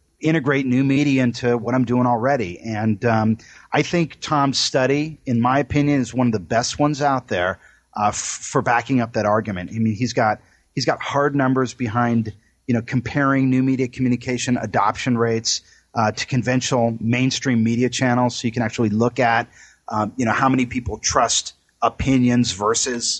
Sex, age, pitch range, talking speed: male, 30-49, 115-135 Hz, 180 wpm